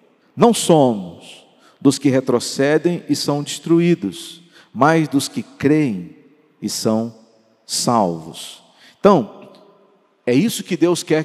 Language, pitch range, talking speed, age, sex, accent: Portuguese, 150-200 Hz, 110 wpm, 50-69, male, Brazilian